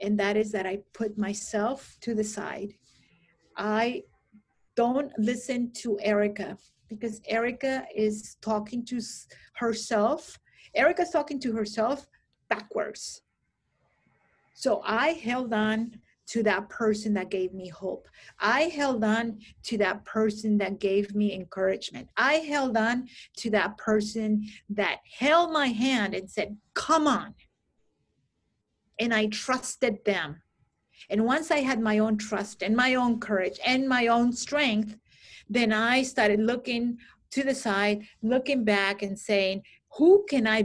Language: English